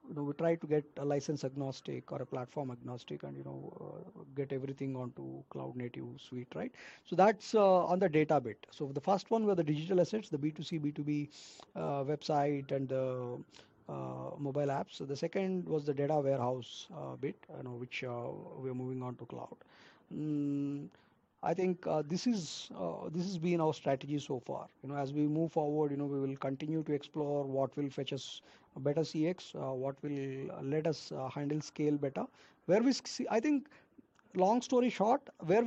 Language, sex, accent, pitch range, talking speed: English, male, Indian, 135-175 Hz, 200 wpm